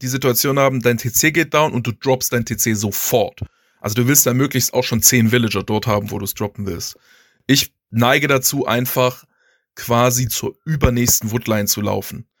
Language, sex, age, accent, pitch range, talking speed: German, male, 20-39, German, 115-135 Hz, 190 wpm